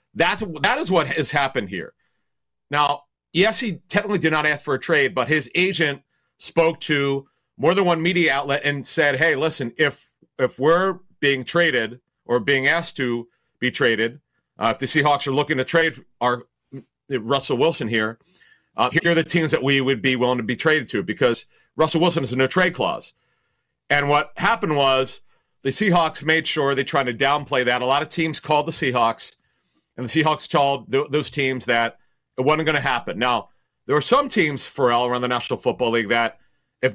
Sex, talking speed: male, 200 wpm